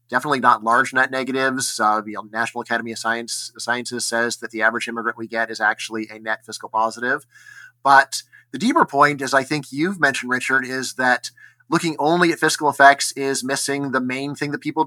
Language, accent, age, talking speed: English, American, 30-49, 200 wpm